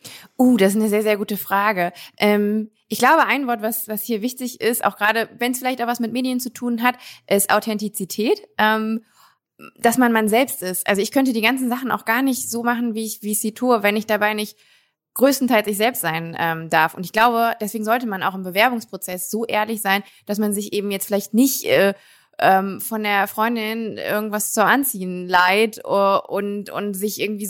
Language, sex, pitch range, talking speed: German, female, 195-235 Hz, 215 wpm